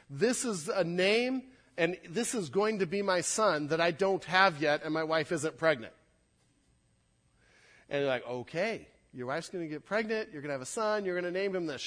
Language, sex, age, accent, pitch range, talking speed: English, male, 40-59, American, 135-195 Hz, 220 wpm